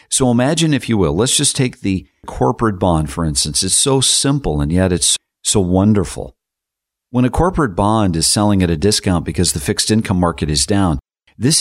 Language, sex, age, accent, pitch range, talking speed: English, male, 50-69, American, 85-115 Hz, 195 wpm